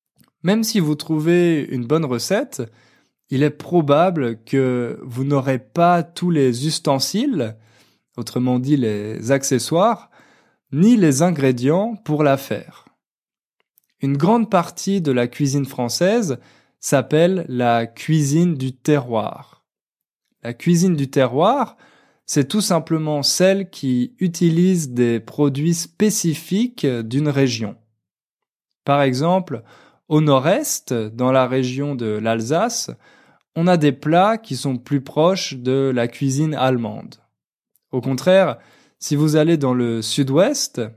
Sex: male